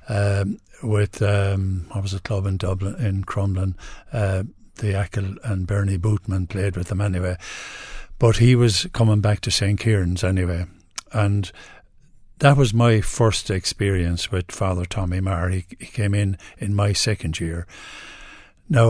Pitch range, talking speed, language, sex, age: 95-115 Hz, 155 wpm, English, male, 60-79